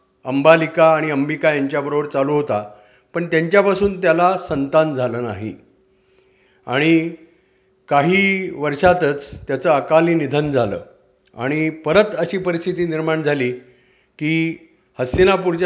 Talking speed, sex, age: 60 wpm, male, 50-69